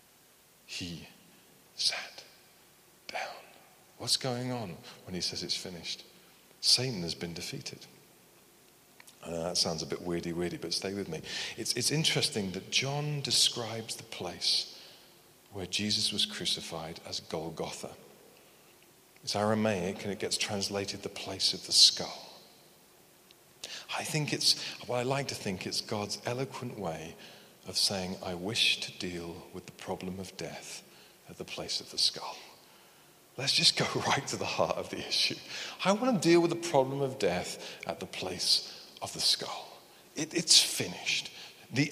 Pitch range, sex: 100-140 Hz, male